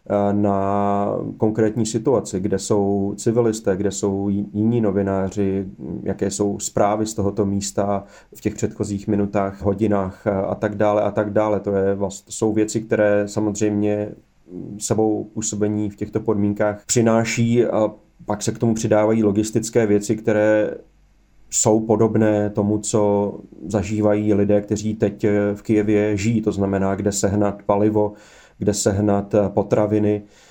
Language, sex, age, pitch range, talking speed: Slovak, male, 30-49, 100-110 Hz, 135 wpm